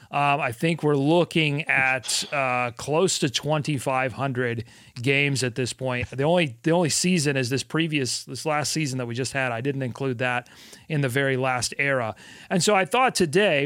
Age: 40-59